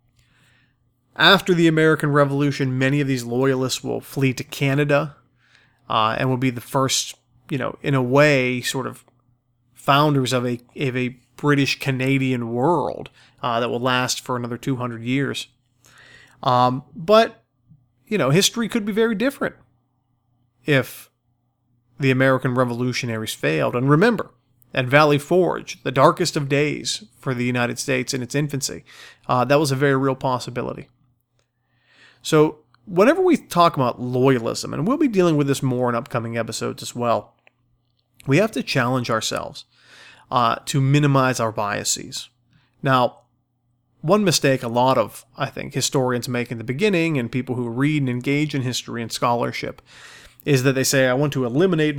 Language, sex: English, male